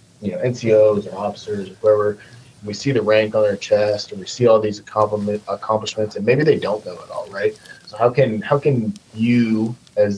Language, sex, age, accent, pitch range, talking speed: English, male, 20-39, American, 105-125 Hz, 210 wpm